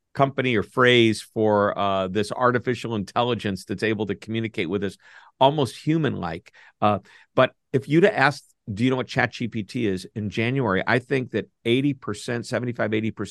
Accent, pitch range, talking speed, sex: American, 100-130 Hz, 160 wpm, male